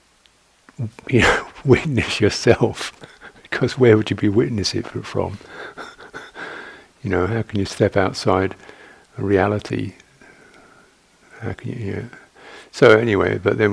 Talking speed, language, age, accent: 125 wpm, English, 50-69, British